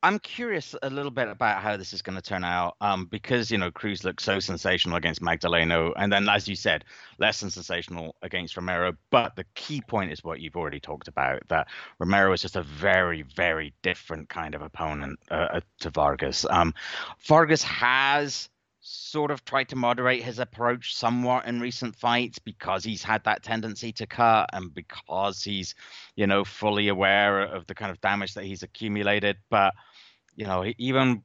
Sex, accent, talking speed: male, British, 185 wpm